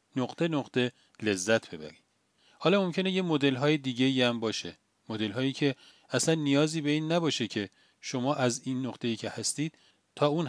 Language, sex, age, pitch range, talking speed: Persian, male, 40-59, 115-155 Hz, 160 wpm